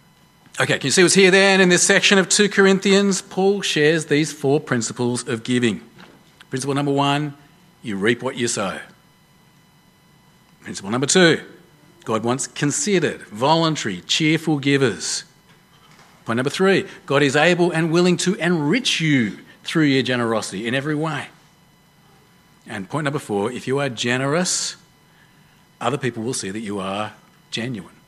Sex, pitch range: male, 135-170 Hz